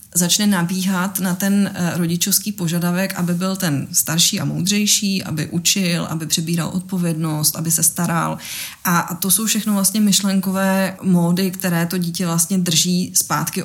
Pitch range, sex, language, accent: 165-200 Hz, female, Czech, native